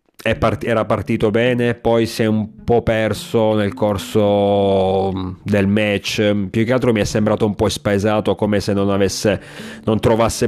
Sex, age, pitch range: male, 30-49, 95-115 Hz